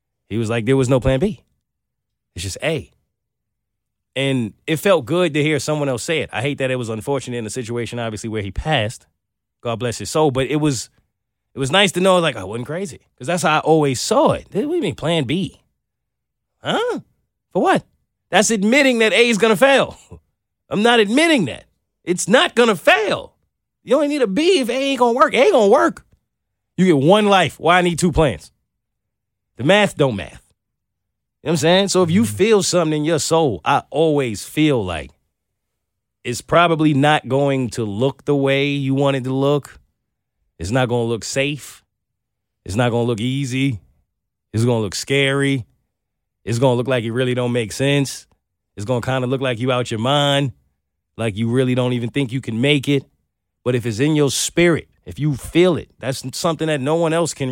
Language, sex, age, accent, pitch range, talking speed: English, male, 30-49, American, 115-160 Hz, 220 wpm